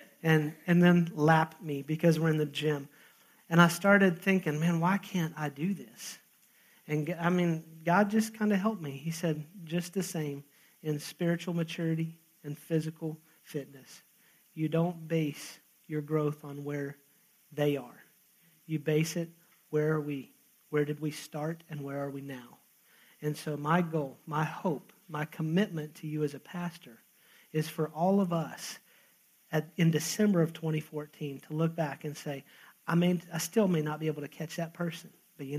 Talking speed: 180 wpm